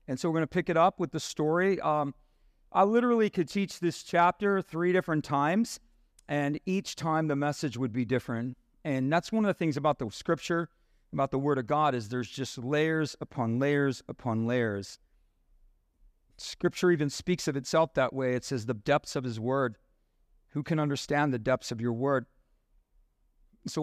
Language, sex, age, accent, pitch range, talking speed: English, male, 40-59, American, 125-170 Hz, 185 wpm